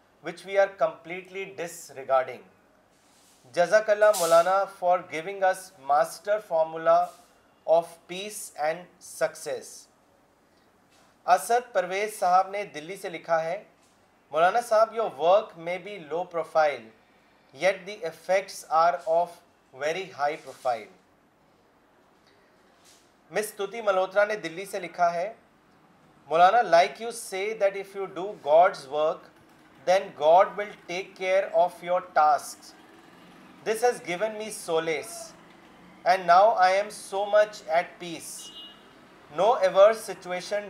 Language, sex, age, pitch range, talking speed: Urdu, male, 30-49, 165-205 Hz, 120 wpm